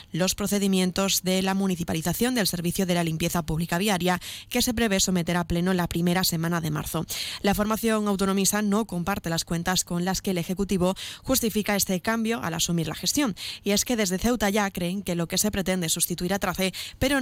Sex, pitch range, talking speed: female, 175-215 Hz, 205 wpm